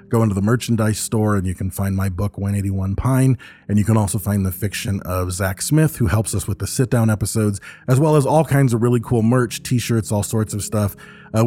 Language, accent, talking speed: English, American, 235 wpm